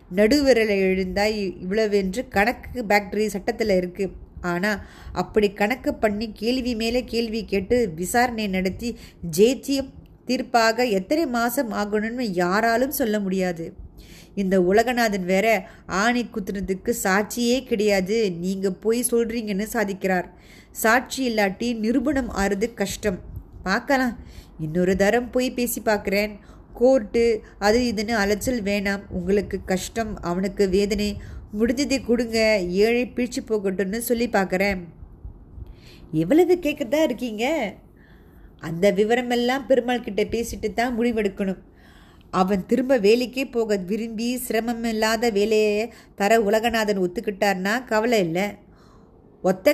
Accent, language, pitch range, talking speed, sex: native, Tamil, 200-240 Hz, 105 wpm, female